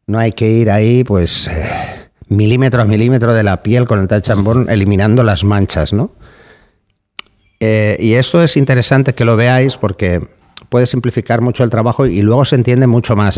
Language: Spanish